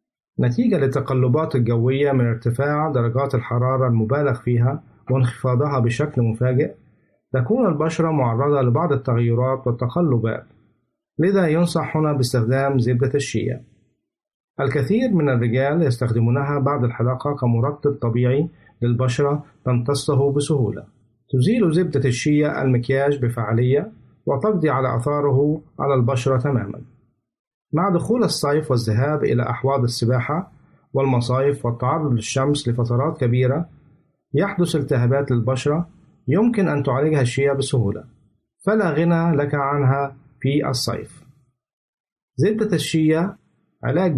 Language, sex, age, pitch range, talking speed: Arabic, male, 50-69, 125-150 Hz, 100 wpm